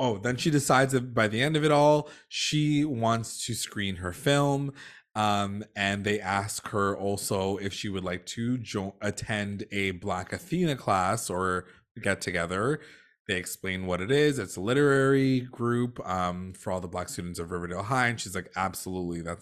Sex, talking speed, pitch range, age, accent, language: male, 180 wpm, 100-140 Hz, 20-39, American, English